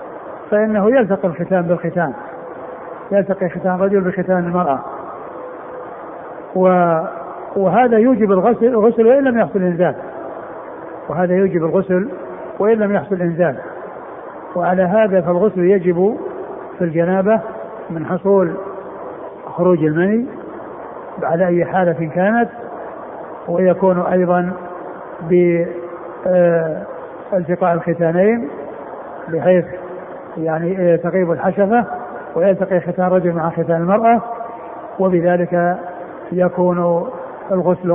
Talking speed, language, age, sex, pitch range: 85 wpm, Arabic, 60-79, male, 175-200 Hz